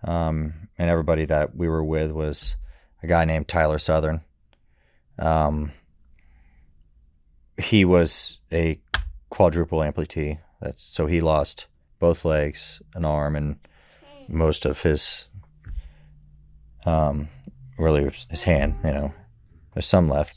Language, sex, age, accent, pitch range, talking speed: Czech, male, 30-49, American, 75-85 Hz, 120 wpm